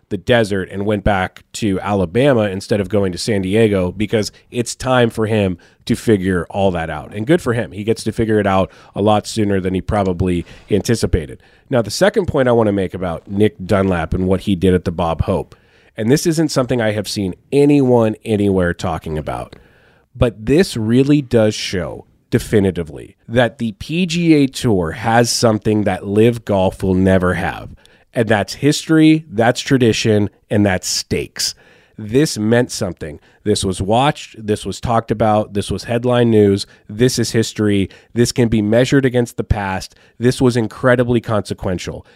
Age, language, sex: 30-49, English, male